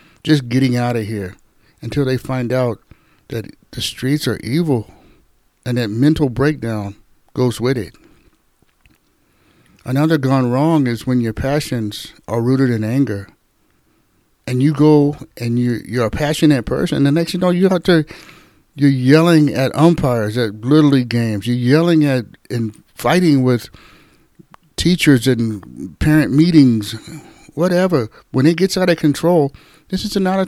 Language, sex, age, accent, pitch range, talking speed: English, male, 60-79, American, 120-155 Hz, 150 wpm